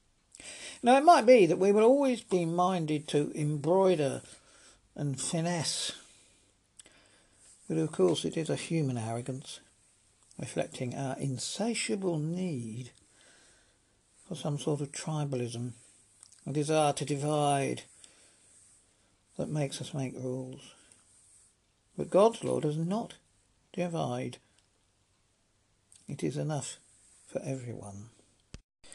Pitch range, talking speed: 105-150 Hz, 105 wpm